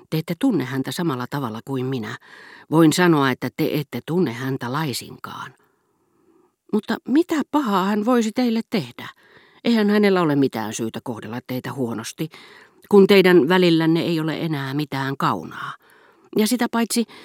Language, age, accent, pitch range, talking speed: Finnish, 40-59, native, 130-195 Hz, 145 wpm